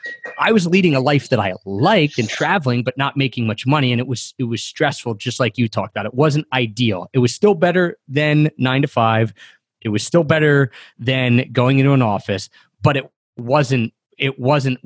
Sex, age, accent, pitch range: male, 30-49, American, 115-150 Hz